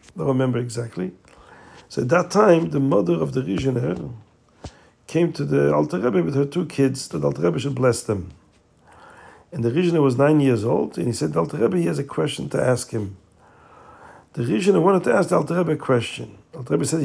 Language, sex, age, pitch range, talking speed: English, male, 50-69, 125-160 Hz, 210 wpm